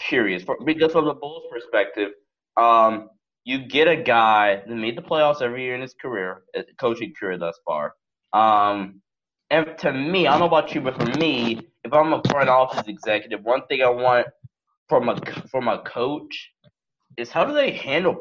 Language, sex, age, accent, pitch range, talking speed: English, male, 20-39, American, 115-150 Hz, 190 wpm